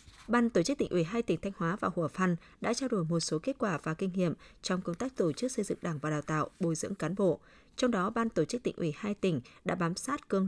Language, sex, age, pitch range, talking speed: Vietnamese, female, 20-39, 170-225 Hz, 285 wpm